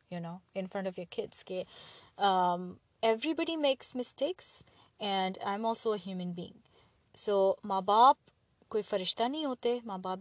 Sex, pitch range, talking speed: female, 180-235 Hz, 160 wpm